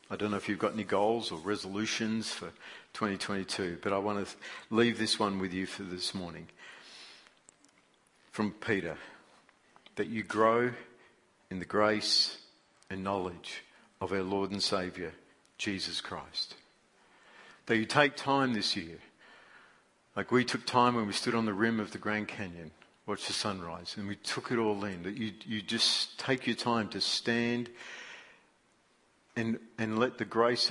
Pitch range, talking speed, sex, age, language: 100-125 Hz, 165 wpm, male, 50-69, English